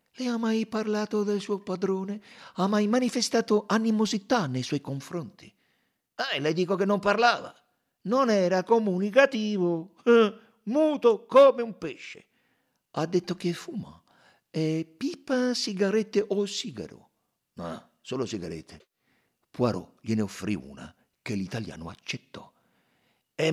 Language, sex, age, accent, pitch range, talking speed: Italian, male, 60-79, native, 160-220 Hz, 130 wpm